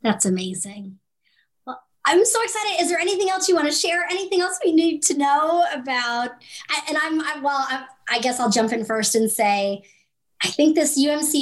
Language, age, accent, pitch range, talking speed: English, 30-49, American, 255-330 Hz, 195 wpm